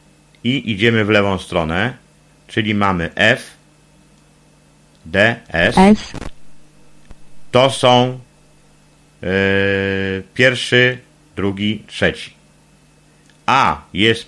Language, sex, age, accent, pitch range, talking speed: Polish, male, 50-69, native, 100-135 Hz, 70 wpm